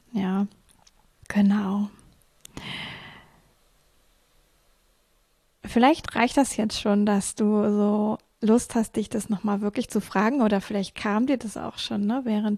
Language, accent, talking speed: German, German, 130 wpm